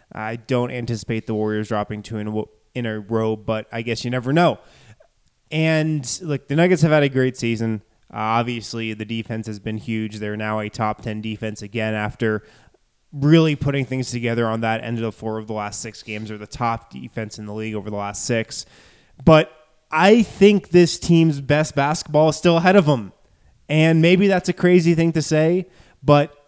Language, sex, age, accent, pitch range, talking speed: English, male, 20-39, American, 115-160 Hz, 200 wpm